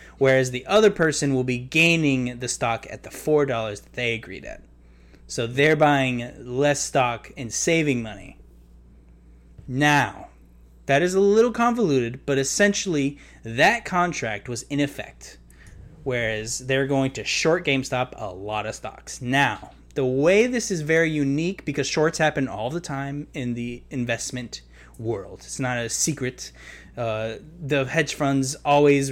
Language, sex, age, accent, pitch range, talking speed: English, male, 20-39, American, 105-155 Hz, 150 wpm